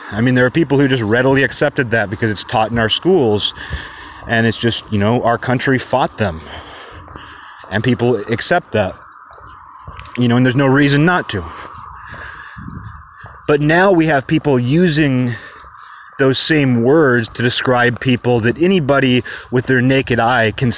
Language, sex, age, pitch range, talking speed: English, male, 30-49, 110-140 Hz, 160 wpm